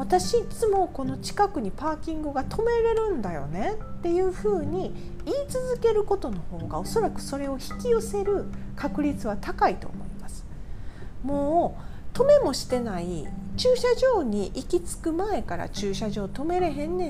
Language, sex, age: Japanese, female, 40-59